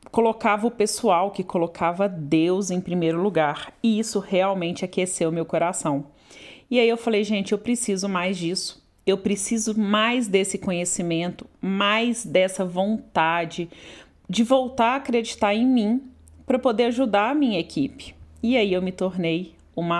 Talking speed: 150 wpm